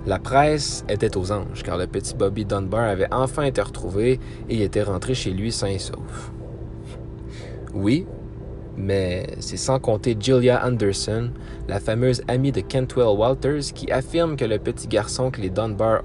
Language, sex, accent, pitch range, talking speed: French, male, Canadian, 105-130 Hz, 165 wpm